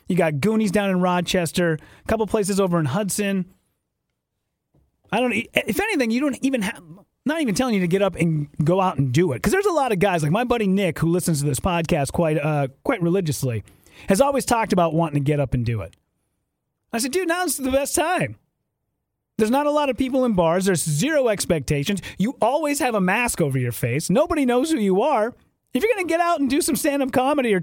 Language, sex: English, male